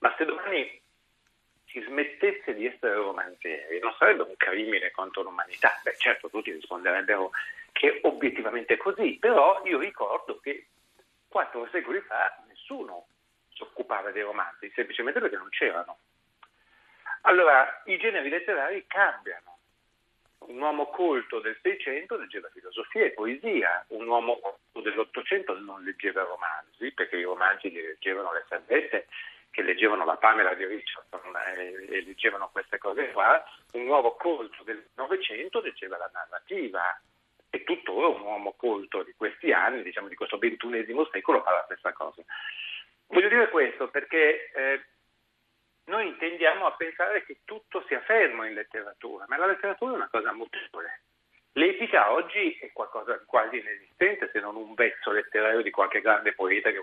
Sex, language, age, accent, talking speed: male, Italian, 50-69, native, 150 wpm